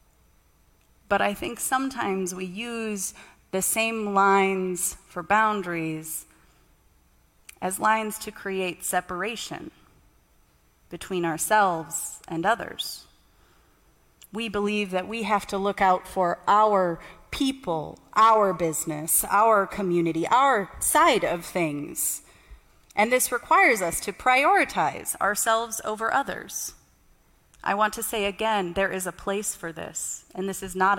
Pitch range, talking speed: 170-220 Hz, 120 wpm